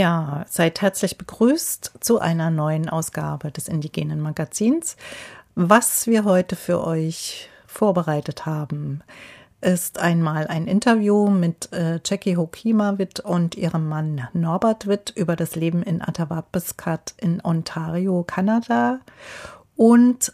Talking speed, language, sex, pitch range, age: 120 wpm, German, female, 170-200 Hz, 40-59